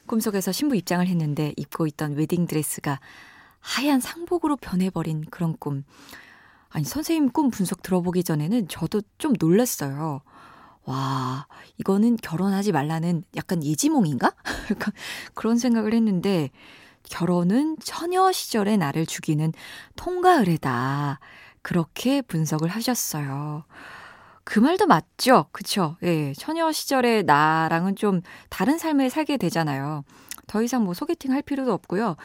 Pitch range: 160-235 Hz